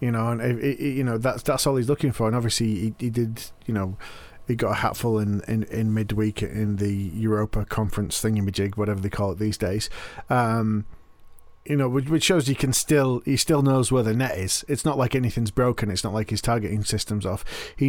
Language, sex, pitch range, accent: English, male, 105-135 Hz, British